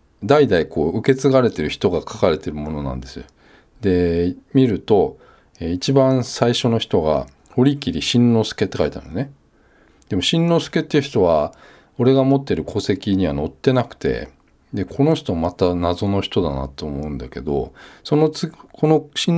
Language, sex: Japanese, male